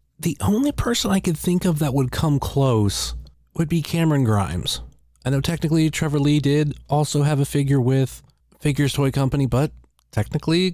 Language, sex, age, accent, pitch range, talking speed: English, male, 30-49, American, 100-145 Hz, 175 wpm